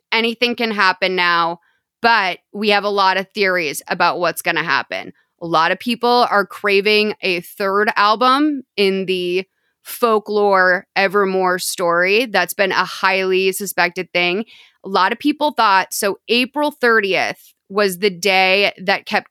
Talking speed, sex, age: 150 wpm, female, 20-39